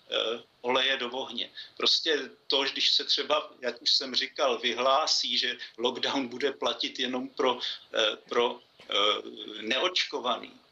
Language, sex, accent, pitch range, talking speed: Czech, male, native, 130-150 Hz, 135 wpm